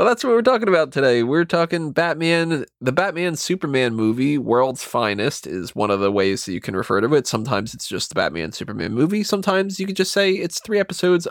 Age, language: 20-39, English